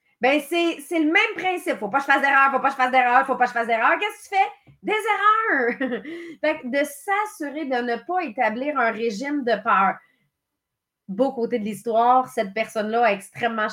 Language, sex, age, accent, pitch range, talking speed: English, female, 30-49, Canadian, 225-290 Hz, 220 wpm